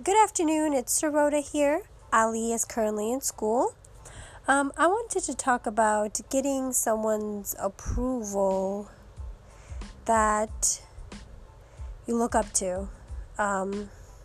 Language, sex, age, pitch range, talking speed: English, female, 20-39, 205-240 Hz, 105 wpm